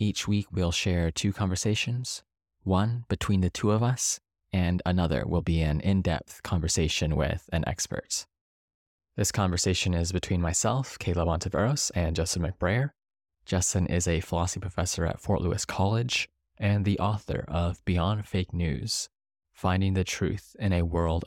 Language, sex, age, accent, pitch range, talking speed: English, male, 20-39, American, 85-100 Hz, 150 wpm